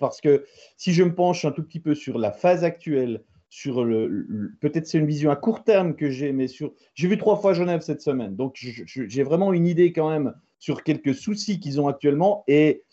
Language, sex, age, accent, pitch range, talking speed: French, male, 30-49, French, 130-180 Hz, 235 wpm